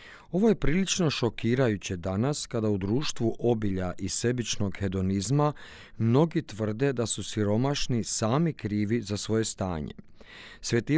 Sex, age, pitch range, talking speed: male, 40-59, 100-130 Hz, 125 wpm